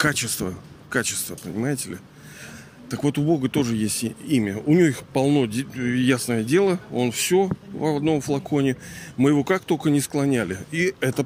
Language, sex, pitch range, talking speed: Russian, male, 120-155 Hz, 160 wpm